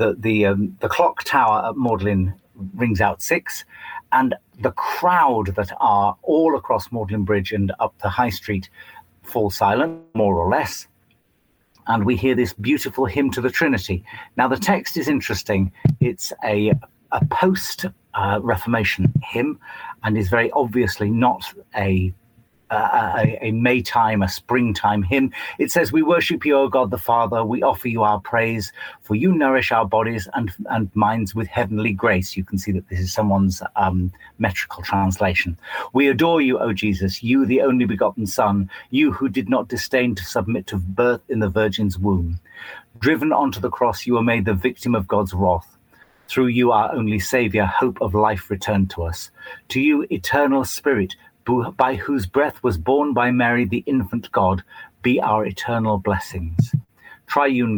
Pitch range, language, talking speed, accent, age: 100-125 Hz, English, 170 wpm, British, 40-59